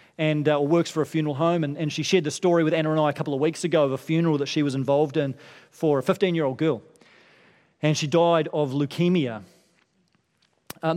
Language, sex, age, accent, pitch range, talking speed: English, male, 30-49, Australian, 150-190 Hz, 220 wpm